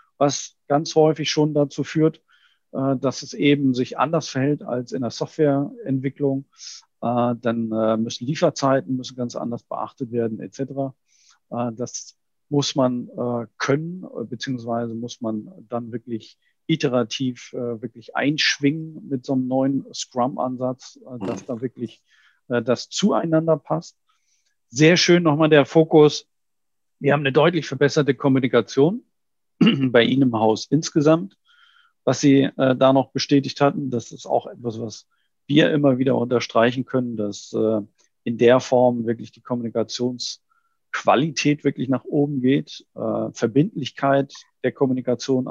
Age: 50-69